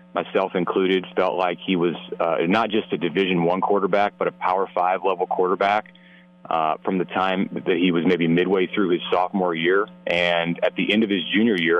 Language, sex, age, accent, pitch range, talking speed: English, male, 30-49, American, 85-100 Hz, 200 wpm